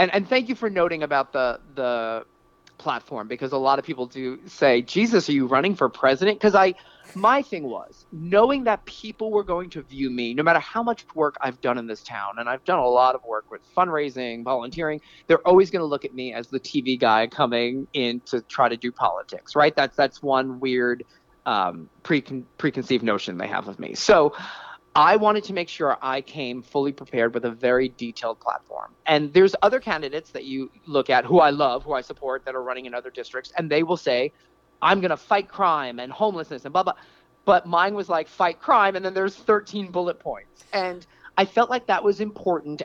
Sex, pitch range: male, 130-185 Hz